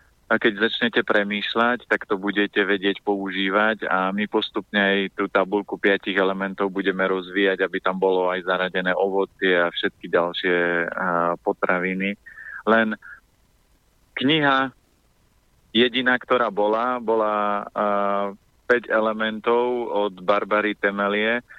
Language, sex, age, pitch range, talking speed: Slovak, male, 30-49, 100-110 Hz, 110 wpm